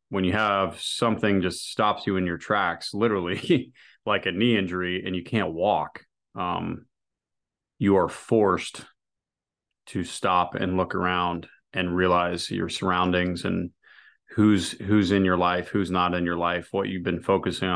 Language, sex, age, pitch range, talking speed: English, male, 30-49, 90-100 Hz, 160 wpm